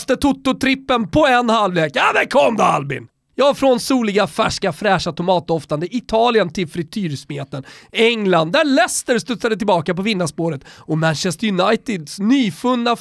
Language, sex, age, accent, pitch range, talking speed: Swedish, male, 30-49, native, 160-235 Hz, 150 wpm